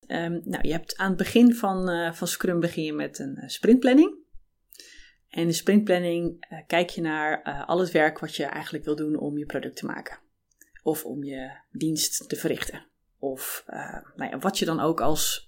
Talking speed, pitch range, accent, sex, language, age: 205 wpm, 160-235 Hz, Dutch, female, Dutch, 20-39